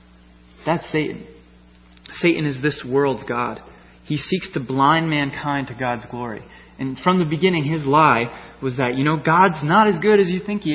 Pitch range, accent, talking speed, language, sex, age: 105-150 Hz, American, 185 wpm, English, male, 20-39